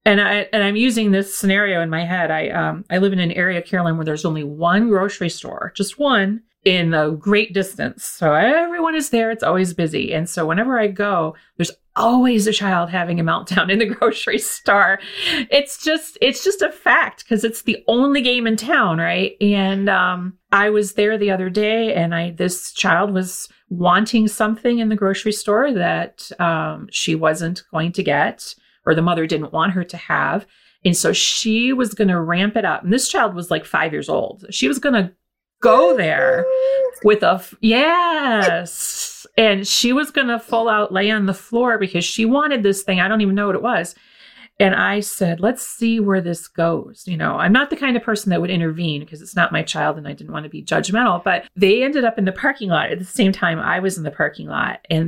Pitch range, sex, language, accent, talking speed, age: 175-225 Hz, female, English, American, 220 wpm, 40-59